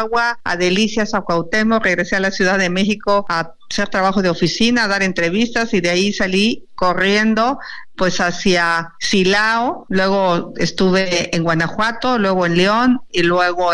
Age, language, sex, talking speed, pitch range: 50-69, Spanish, female, 155 wpm, 175-210 Hz